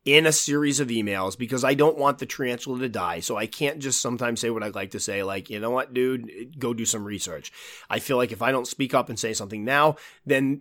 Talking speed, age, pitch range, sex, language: 260 wpm, 30-49, 115-150 Hz, male, English